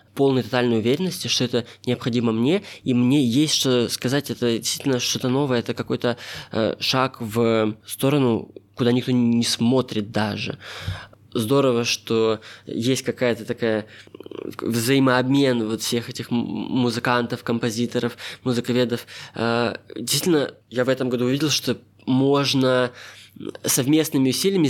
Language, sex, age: Russian, male, 20-39